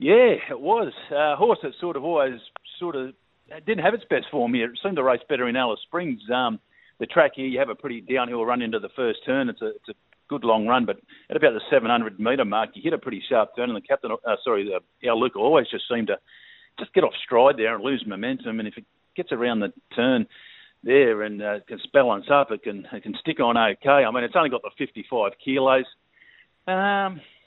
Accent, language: Australian, English